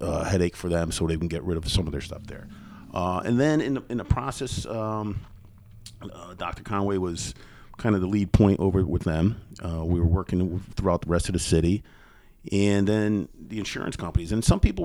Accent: American